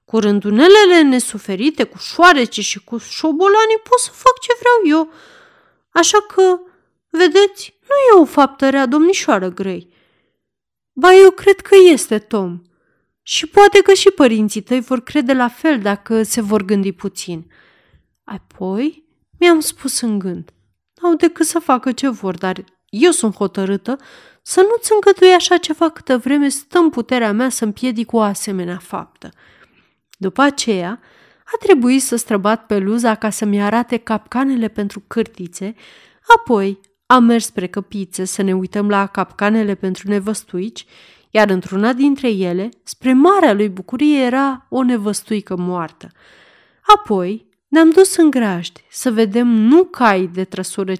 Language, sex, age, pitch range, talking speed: Romanian, female, 30-49, 200-320 Hz, 145 wpm